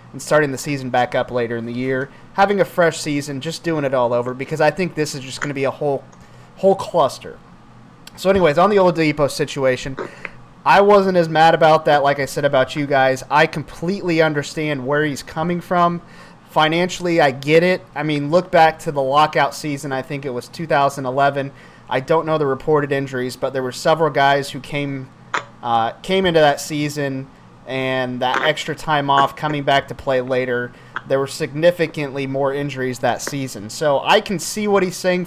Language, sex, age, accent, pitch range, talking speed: English, male, 30-49, American, 135-165 Hz, 195 wpm